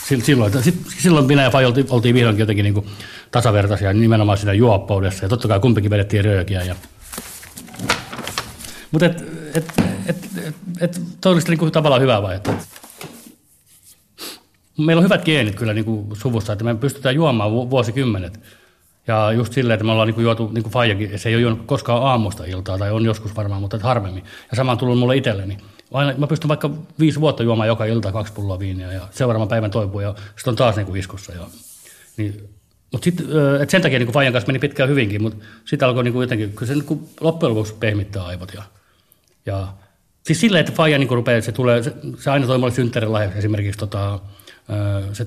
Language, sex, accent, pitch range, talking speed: Finnish, male, native, 105-135 Hz, 190 wpm